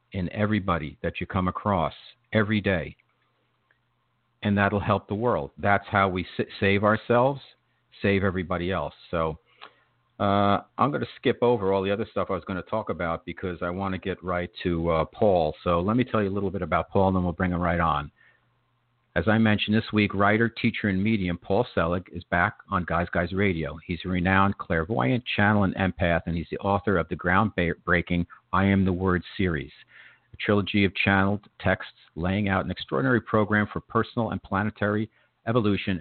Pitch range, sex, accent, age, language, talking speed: 90-110 Hz, male, American, 50-69, English, 190 wpm